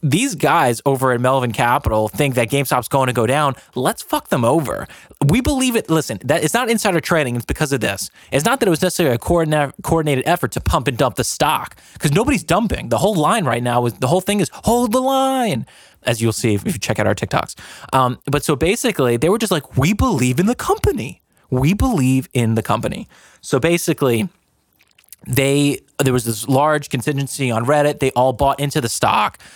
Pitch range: 120-155 Hz